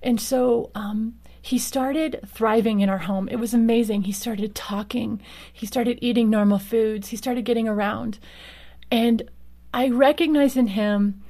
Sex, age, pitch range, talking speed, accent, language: female, 30-49, 205-240 Hz, 155 wpm, American, English